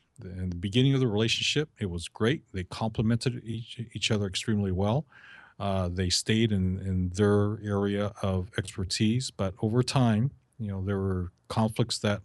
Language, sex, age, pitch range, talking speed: English, male, 40-59, 95-115 Hz, 165 wpm